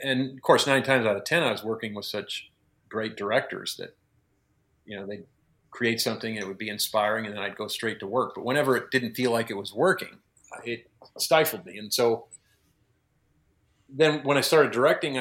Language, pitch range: English, 105-130 Hz